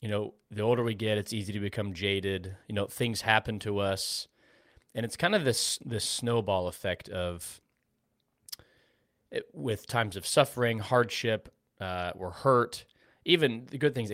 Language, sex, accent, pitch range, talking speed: English, male, American, 100-125 Hz, 165 wpm